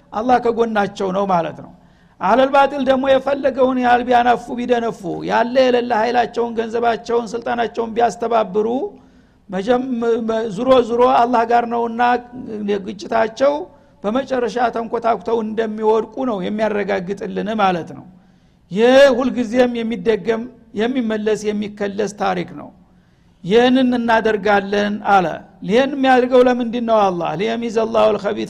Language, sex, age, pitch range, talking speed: Amharic, male, 60-79, 215-245 Hz, 40 wpm